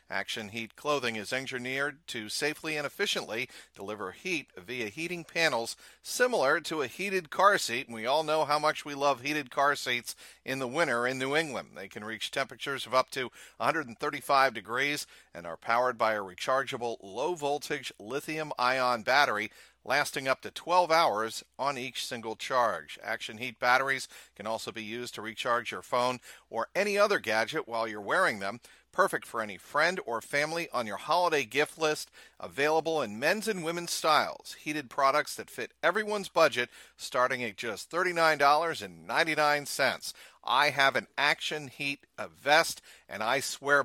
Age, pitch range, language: 40-59, 115-155 Hz, English